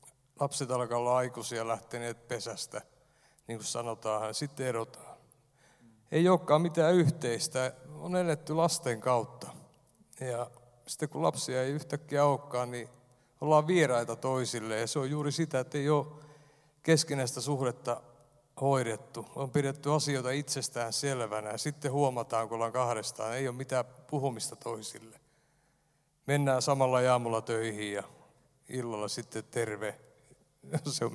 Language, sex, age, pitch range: Finnish, male, 60-79, 120-150 Hz